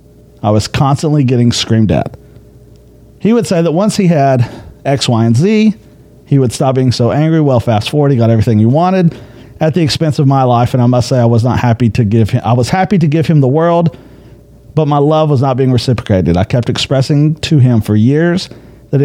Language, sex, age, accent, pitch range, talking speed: English, male, 40-59, American, 120-155 Hz, 225 wpm